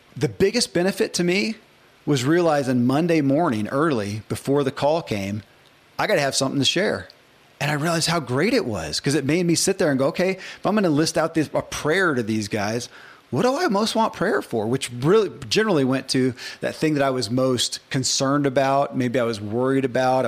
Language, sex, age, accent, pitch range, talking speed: English, male, 30-49, American, 120-160 Hz, 220 wpm